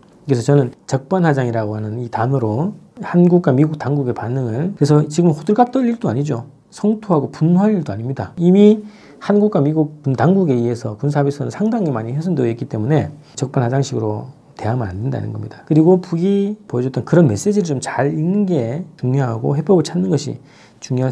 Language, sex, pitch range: Korean, male, 125-170 Hz